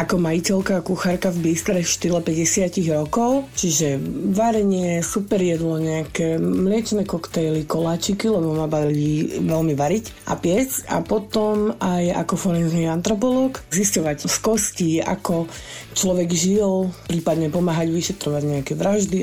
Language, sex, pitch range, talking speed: Slovak, female, 165-215 Hz, 130 wpm